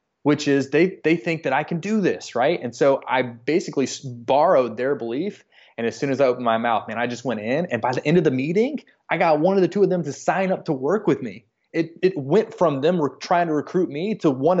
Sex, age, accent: male, 20-39, American